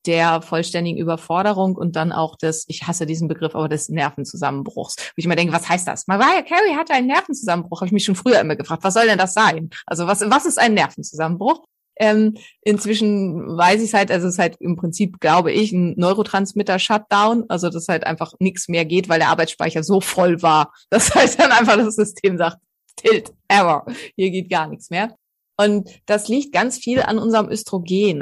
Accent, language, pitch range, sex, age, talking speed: German, German, 170-220 Hz, female, 30-49, 205 wpm